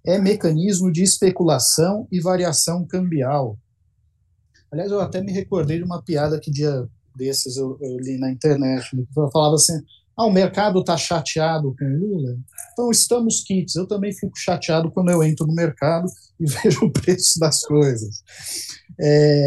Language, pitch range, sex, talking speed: Portuguese, 130-170 Hz, male, 160 wpm